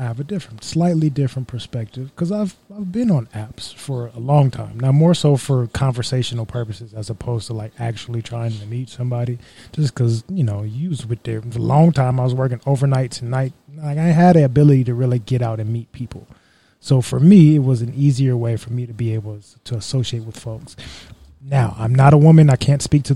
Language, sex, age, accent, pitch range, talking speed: English, male, 20-39, American, 120-155 Hz, 220 wpm